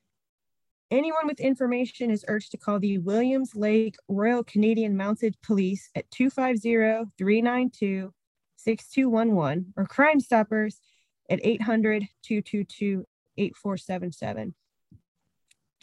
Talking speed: 80 wpm